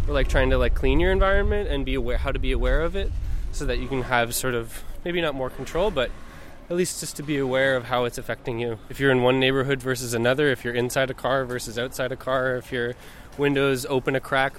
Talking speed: 250 wpm